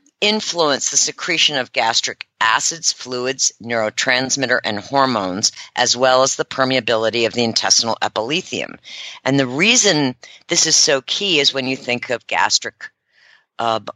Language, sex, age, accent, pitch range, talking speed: English, female, 50-69, American, 120-155 Hz, 140 wpm